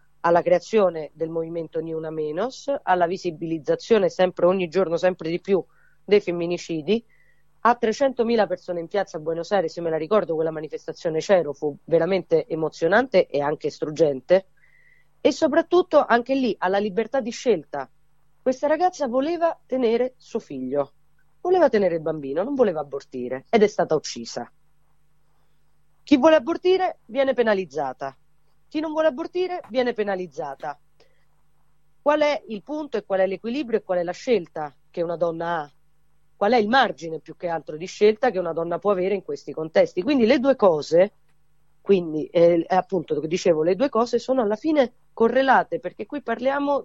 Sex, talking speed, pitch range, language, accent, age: female, 160 wpm, 160-235 Hz, Italian, native, 30-49